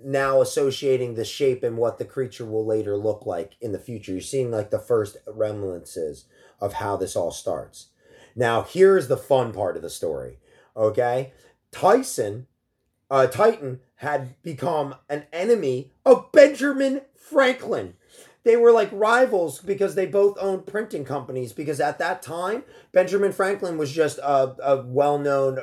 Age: 30-49